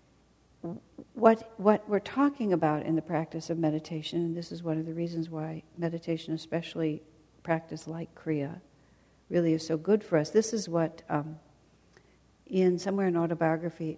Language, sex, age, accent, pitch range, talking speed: English, female, 60-79, American, 160-195 Hz, 160 wpm